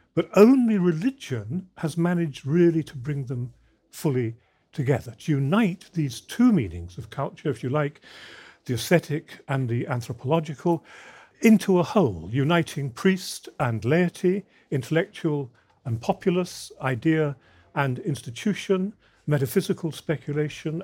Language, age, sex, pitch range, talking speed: English, 50-69, male, 125-170 Hz, 120 wpm